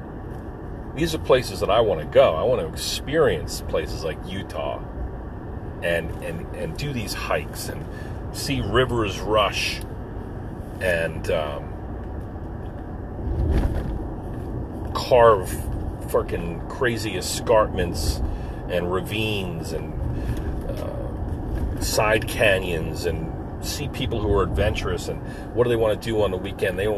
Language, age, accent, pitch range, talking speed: English, 40-59, American, 85-105 Hz, 120 wpm